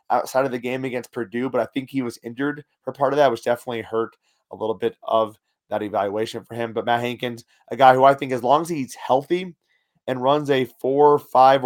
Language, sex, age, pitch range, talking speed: English, male, 30-49, 115-135 Hz, 230 wpm